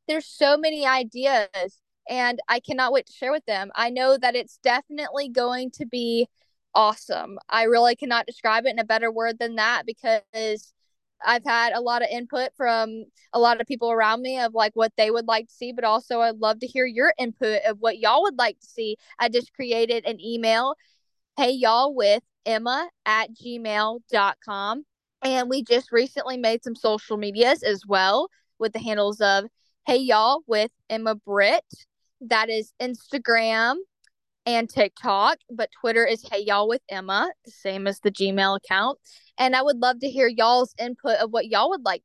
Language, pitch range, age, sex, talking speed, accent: English, 220-260 Hz, 10-29, female, 185 wpm, American